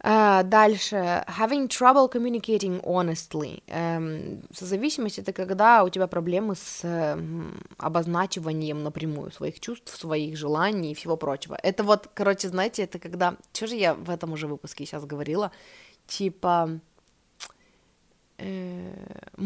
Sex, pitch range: female, 170-225 Hz